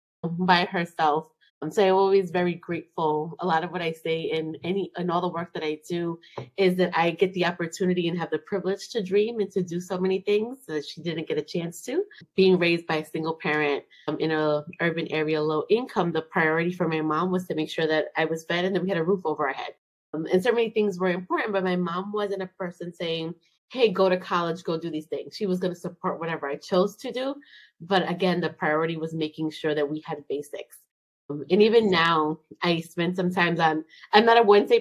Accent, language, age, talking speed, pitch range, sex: American, English, 20-39, 240 wpm, 160-195 Hz, female